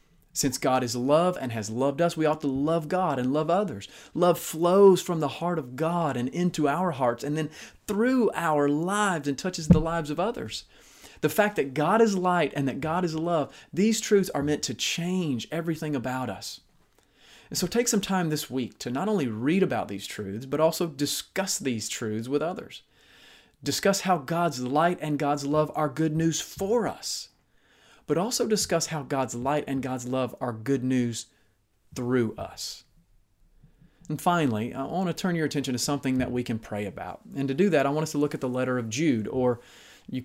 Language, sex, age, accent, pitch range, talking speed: English, male, 30-49, American, 125-165 Hz, 205 wpm